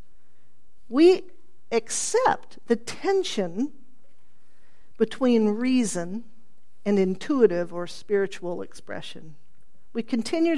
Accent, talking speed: American, 75 wpm